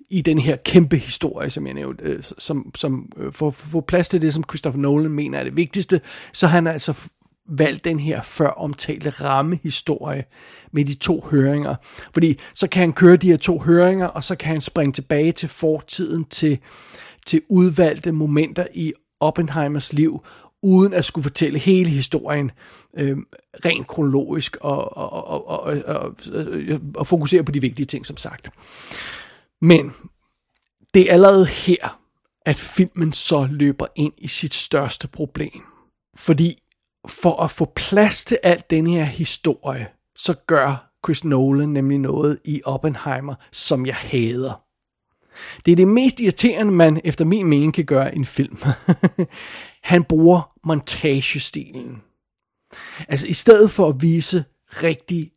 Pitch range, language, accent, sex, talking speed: 145-170 Hz, Danish, native, male, 150 wpm